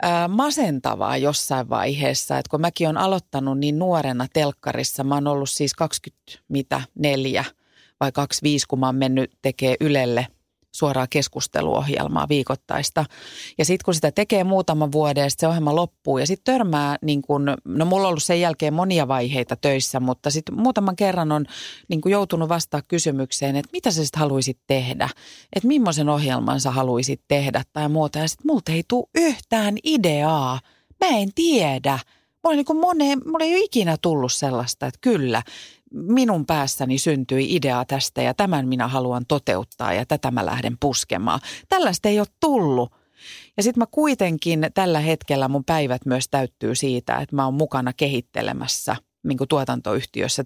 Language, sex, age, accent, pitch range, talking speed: Finnish, female, 30-49, native, 135-180 Hz, 165 wpm